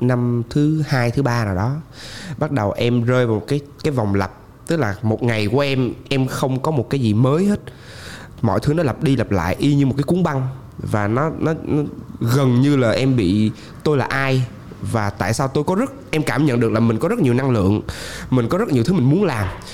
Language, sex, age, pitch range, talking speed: Vietnamese, male, 20-39, 105-135 Hz, 245 wpm